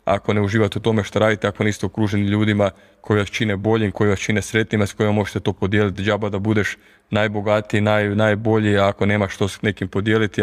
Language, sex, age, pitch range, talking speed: Croatian, male, 20-39, 100-110 Hz, 215 wpm